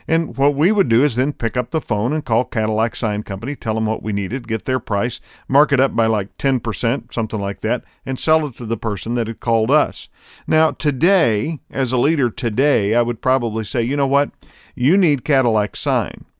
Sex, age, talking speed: male, 50-69, 220 wpm